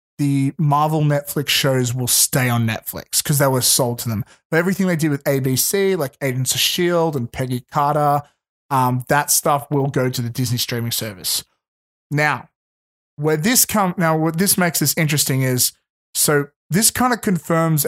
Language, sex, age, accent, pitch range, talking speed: English, male, 30-49, Australian, 135-170 Hz, 180 wpm